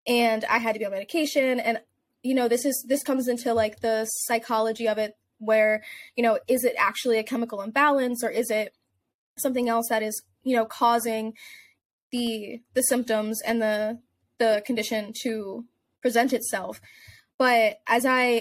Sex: female